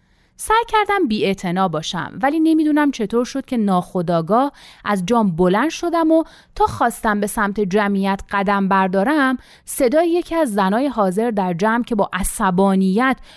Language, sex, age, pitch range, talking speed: Persian, female, 30-49, 185-300 Hz, 150 wpm